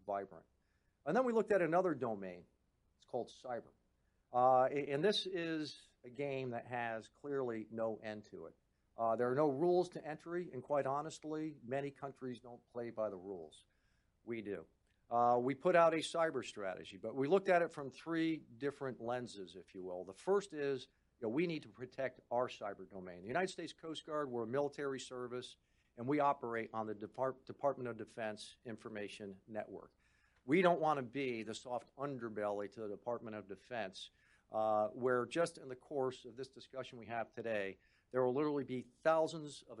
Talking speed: 185 wpm